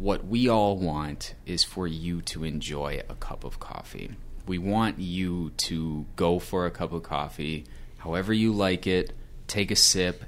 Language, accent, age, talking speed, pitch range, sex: English, American, 30-49, 175 wpm, 75-95 Hz, male